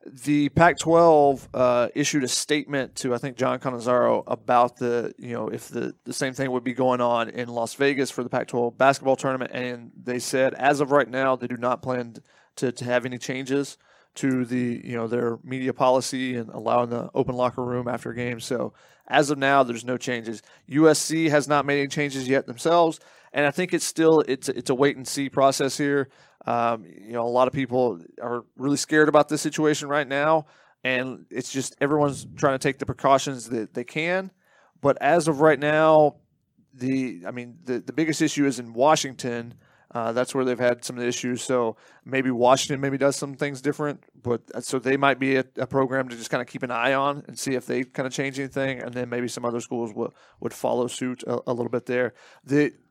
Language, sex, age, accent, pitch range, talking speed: English, male, 30-49, American, 125-145 Hz, 215 wpm